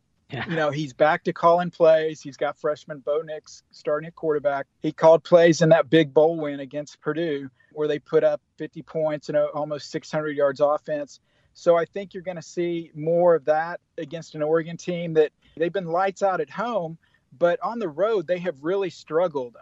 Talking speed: 200 wpm